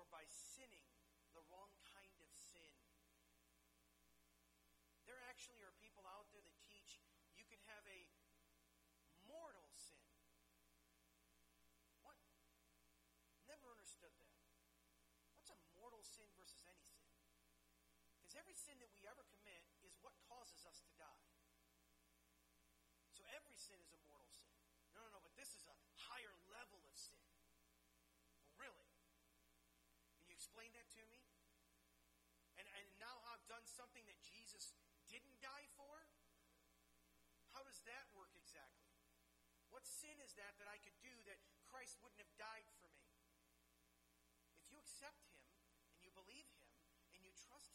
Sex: male